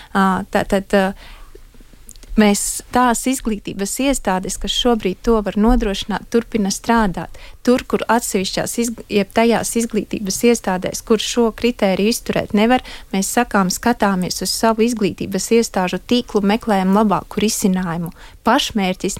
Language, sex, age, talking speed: Russian, female, 30-49, 115 wpm